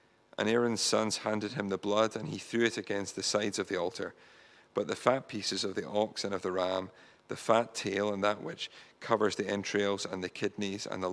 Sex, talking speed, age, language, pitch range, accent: male, 225 wpm, 40-59, English, 100-110 Hz, British